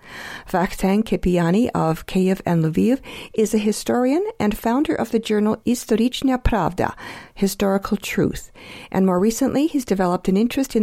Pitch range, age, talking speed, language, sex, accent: 190-250 Hz, 50-69, 145 wpm, English, female, American